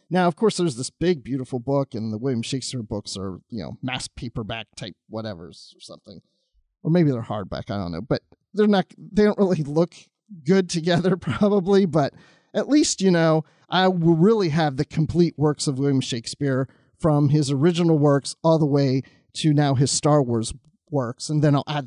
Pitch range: 130-180 Hz